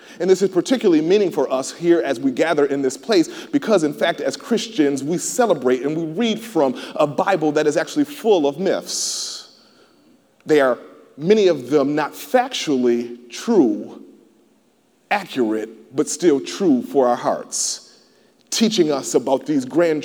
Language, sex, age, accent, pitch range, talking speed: English, male, 30-49, American, 145-225 Hz, 160 wpm